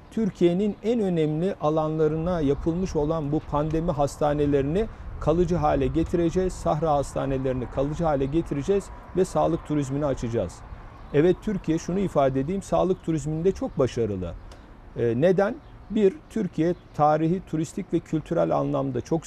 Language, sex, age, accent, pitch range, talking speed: Turkish, male, 50-69, native, 145-185 Hz, 120 wpm